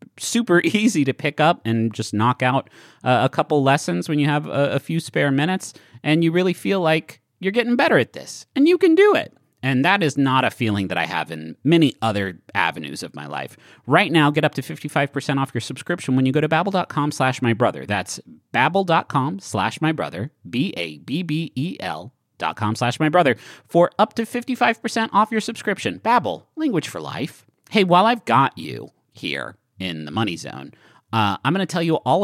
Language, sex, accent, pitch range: English, male, American, 120-180 Hz